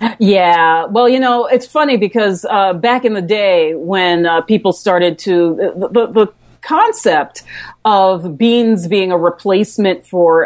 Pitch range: 180-220 Hz